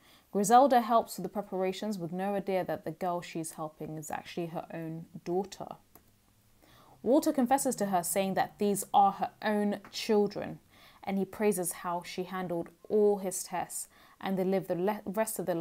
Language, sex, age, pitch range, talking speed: English, female, 20-39, 175-220 Hz, 175 wpm